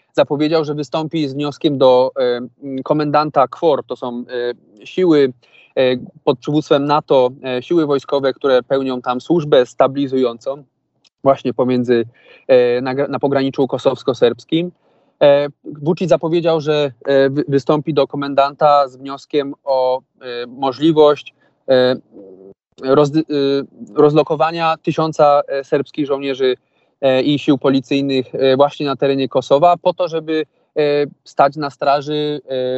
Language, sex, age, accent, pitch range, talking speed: Polish, male, 20-39, native, 130-155 Hz, 95 wpm